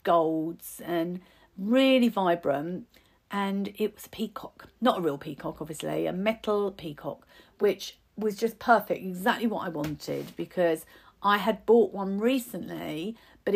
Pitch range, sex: 175-220 Hz, female